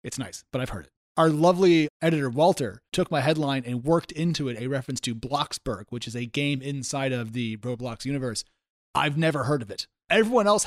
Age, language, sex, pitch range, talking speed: 30-49, English, male, 130-165 Hz, 210 wpm